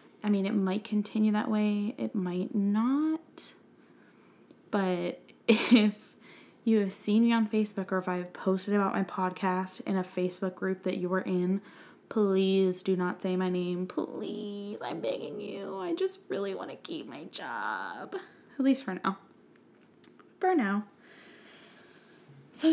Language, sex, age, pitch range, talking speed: English, female, 20-39, 185-230 Hz, 155 wpm